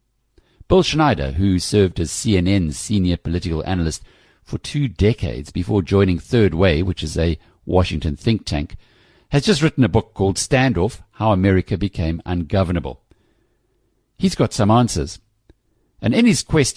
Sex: male